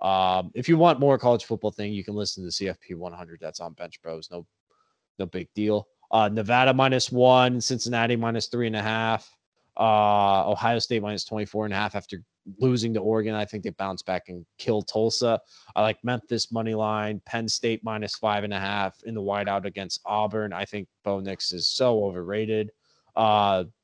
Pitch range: 105-140 Hz